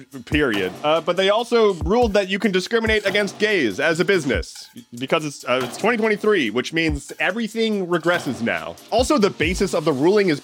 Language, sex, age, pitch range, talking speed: English, male, 30-49, 155-225 Hz, 185 wpm